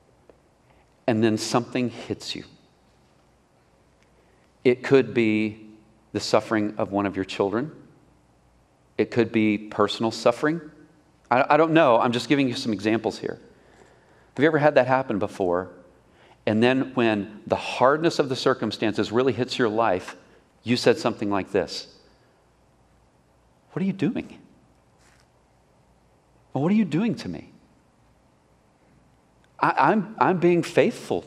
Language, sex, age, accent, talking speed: English, male, 40-59, American, 135 wpm